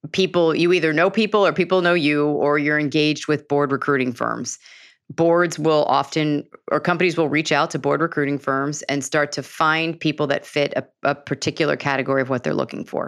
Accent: American